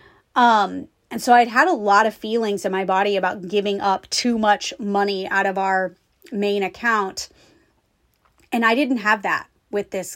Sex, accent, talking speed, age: female, American, 175 wpm, 30-49